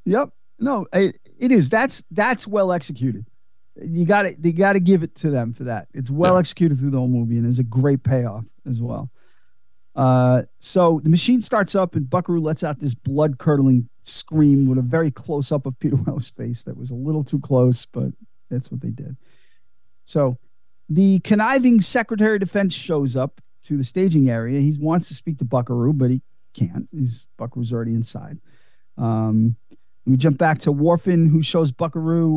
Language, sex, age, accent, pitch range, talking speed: English, male, 40-59, American, 125-170 Hz, 190 wpm